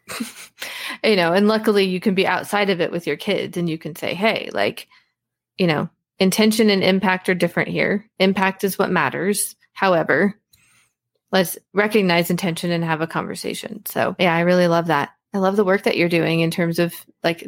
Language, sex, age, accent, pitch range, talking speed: English, female, 30-49, American, 170-215 Hz, 190 wpm